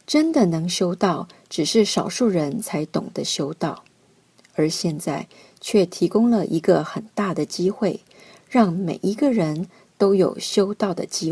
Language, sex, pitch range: Chinese, female, 180-220 Hz